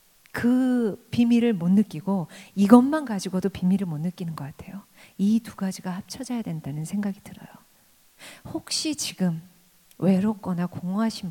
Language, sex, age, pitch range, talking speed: English, female, 40-59, 180-230 Hz, 110 wpm